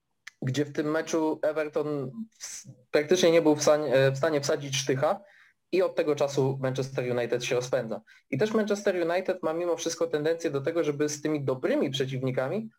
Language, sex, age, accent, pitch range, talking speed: Polish, male, 20-39, native, 130-170 Hz, 165 wpm